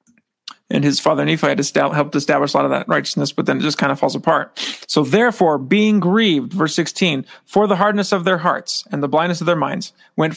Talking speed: 225 wpm